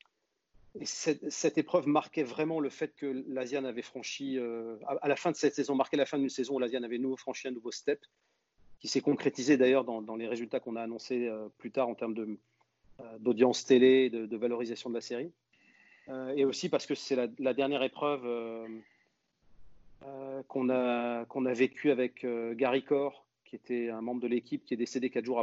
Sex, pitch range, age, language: male, 120-135 Hz, 40-59, French